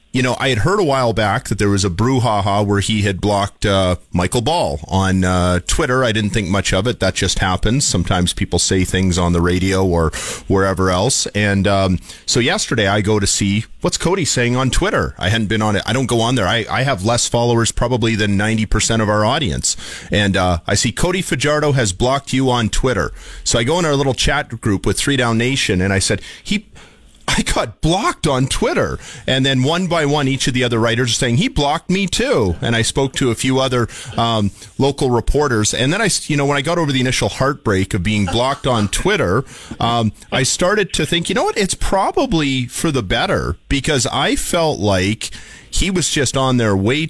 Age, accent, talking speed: 40-59, American, 220 wpm